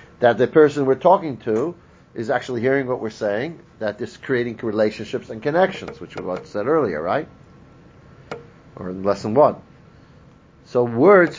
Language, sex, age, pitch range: English, male, 50-69, 105-135 Hz